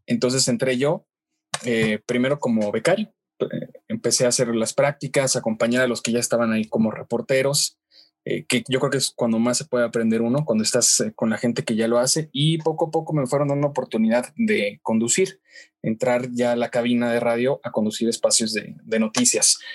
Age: 20-39